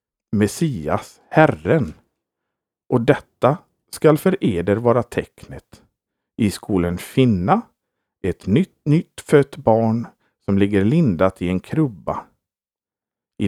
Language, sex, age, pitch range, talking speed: Swedish, male, 50-69, 100-135 Hz, 105 wpm